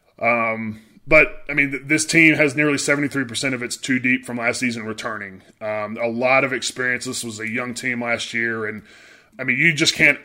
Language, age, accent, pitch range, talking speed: English, 20-39, American, 115-140 Hz, 220 wpm